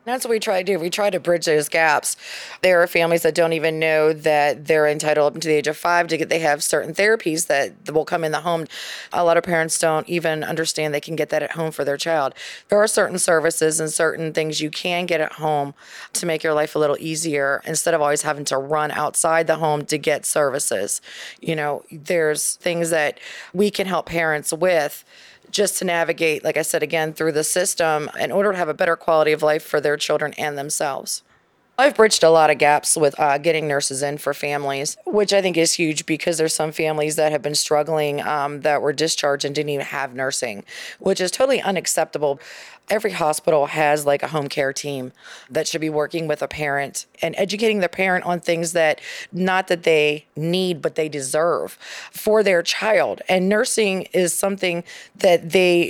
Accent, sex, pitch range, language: American, female, 150-175 Hz, English